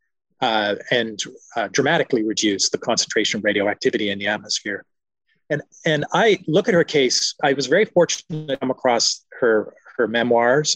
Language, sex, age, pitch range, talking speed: English, male, 30-49, 110-150 Hz, 160 wpm